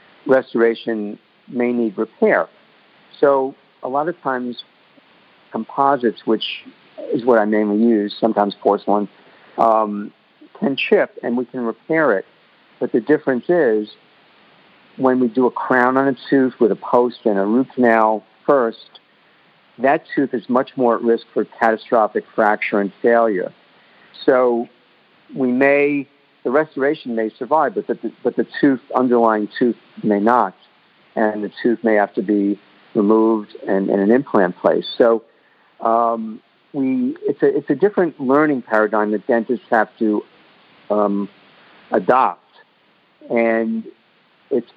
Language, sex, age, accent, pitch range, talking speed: English, male, 50-69, American, 105-130 Hz, 140 wpm